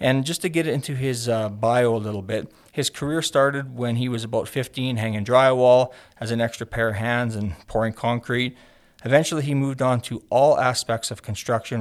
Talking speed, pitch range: 200 wpm, 110-130 Hz